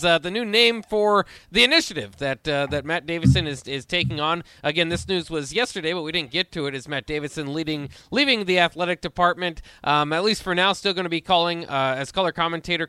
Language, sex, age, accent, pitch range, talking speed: English, male, 20-39, American, 145-190 Hz, 230 wpm